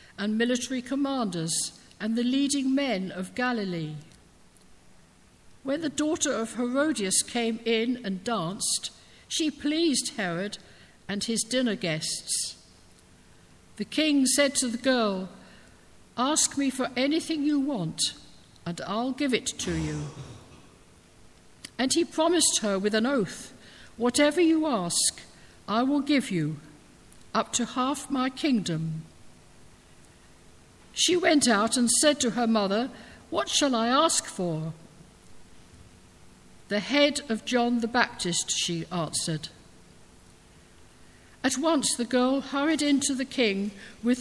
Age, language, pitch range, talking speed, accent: 60-79, English, 170-270 Hz, 125 wpm, British